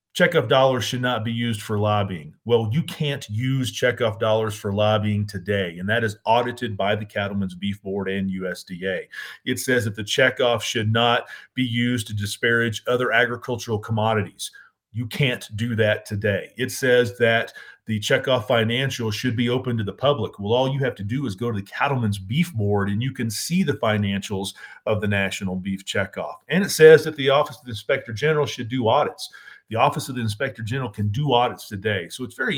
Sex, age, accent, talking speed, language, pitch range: male, 40-59, American, 200 wpm, English, 105-125 Hz